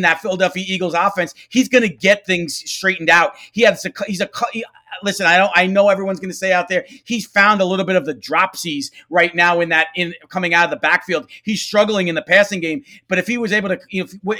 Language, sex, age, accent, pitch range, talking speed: English, male, 40-59, American, 175-205 Hz, 240 wpm